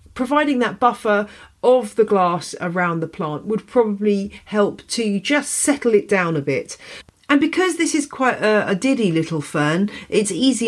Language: English